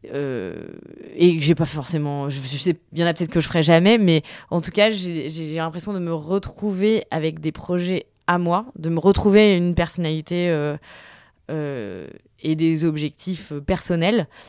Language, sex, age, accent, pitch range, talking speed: French, female, 20-39, French, 150-185 Hz, 180 wpm